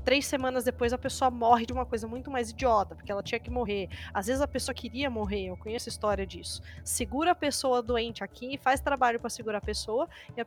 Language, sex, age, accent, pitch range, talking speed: Portuguese, female, 20-39, Brazilian, 210-285 Hz, 235 wpm